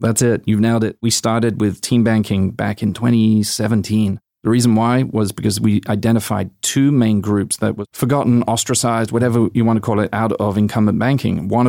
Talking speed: 195 wpm